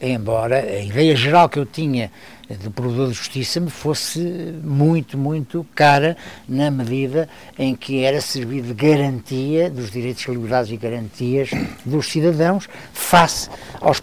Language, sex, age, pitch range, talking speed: Portuguese, male, 60-79, 125-160 Hz, 140 wpm